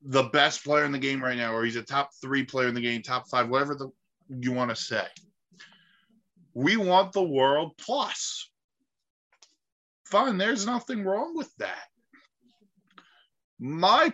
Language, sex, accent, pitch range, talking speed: English, male, American, 140-195 Hz, 155 wpm